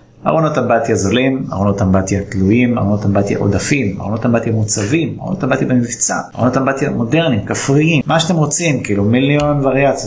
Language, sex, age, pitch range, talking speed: Hebrew, male, 30-49, 105-140 Hz, 150 wpm